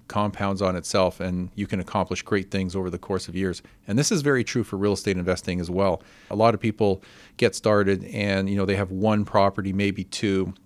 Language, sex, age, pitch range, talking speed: English, male, 40-59, 95-110 Hz, 225 wpm